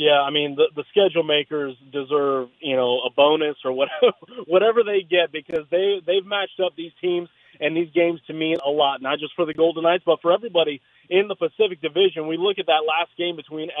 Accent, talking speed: American, 220 wpm